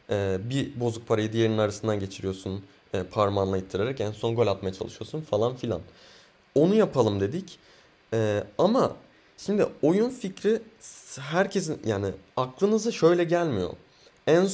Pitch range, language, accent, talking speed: 110-170 Hz, Turkish, native, 130 wpm